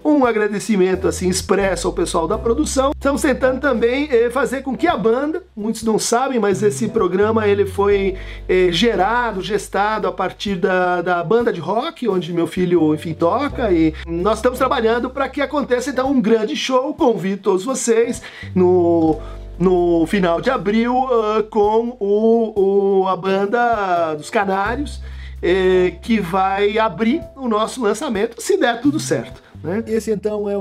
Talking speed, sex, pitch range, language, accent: 155 wpm, male, 185-240 Hz, Portuguese, Brazilian